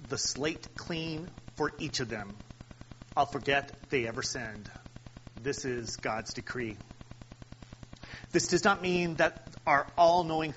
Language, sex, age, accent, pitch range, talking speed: English, male, 40-59, American, 125-165 Hz, 130 wpm